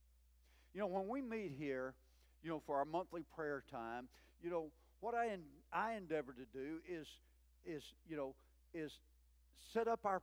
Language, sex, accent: English, male, American